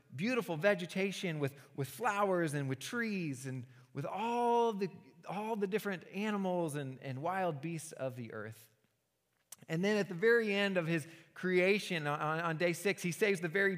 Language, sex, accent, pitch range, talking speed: English, male, American, 135-195 Hz, 175 wpm